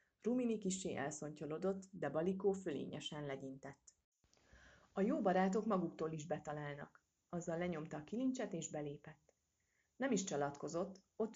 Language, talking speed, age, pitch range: Hungarian, 120 wpm, 30-49, 150-190 Hz